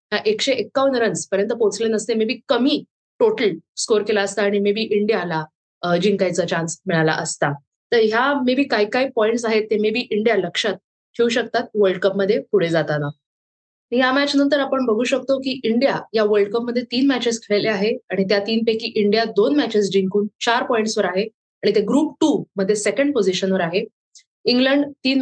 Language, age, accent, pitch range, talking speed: Marathi, 20-39, native, 200-250 Hz, 180 wpm